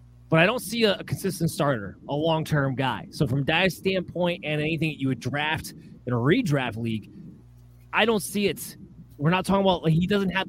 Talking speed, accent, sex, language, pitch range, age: 205 wpm, American, male, English, 135-180 Hz, 30-49